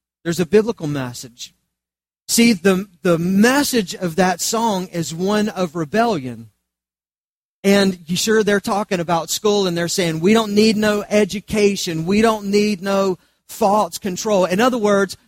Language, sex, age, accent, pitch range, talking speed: English, male, 40-59, American, 150-220 Hz, 155 wpm